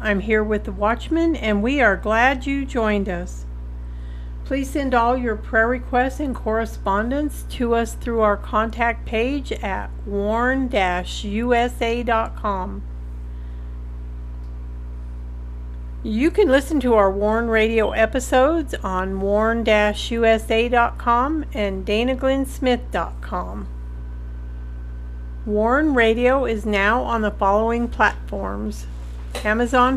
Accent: American